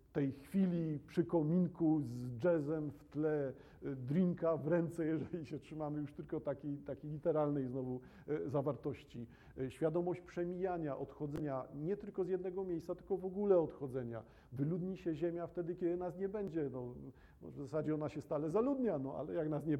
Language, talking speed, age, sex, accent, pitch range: Polish, 160 wpm, 50-69, male, native, 135-175 Hz